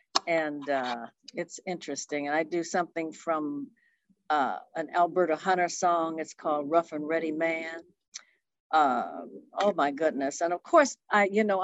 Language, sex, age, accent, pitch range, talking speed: English, female, 50-69, American, 160-195 Hz, 155 wpm